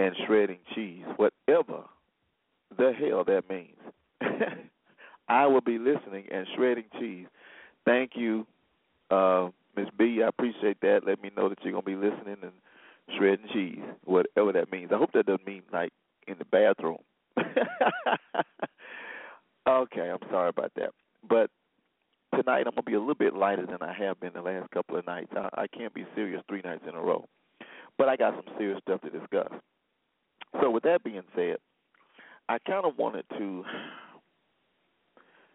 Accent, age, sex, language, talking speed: American, 40-59, male, English, 160 wpm